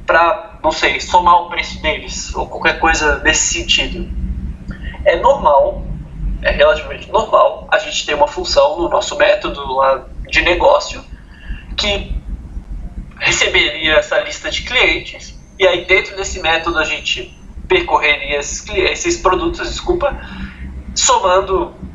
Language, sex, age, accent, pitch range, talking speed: Portuguese, male, 20-39, Brazilian, 150-235 Hz, 130 wpm